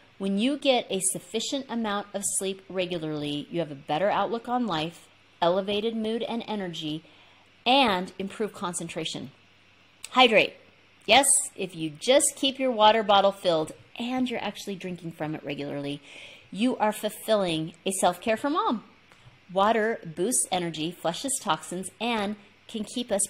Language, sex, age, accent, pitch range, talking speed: English, female, 30-49, American, 165-225 Hz, 145 wpm